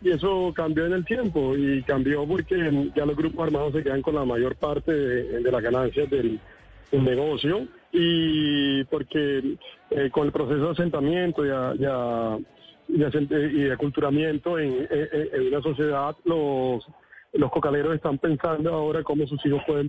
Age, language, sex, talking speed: 40-59, Spanish, male, 165 wpm